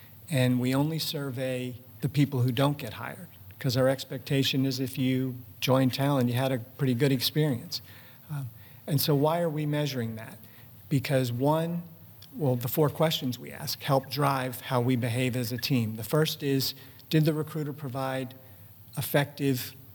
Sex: male